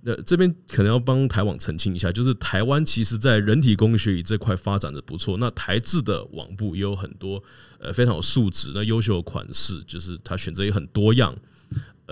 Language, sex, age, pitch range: Chinese, male, 20-39, 95-115 Hz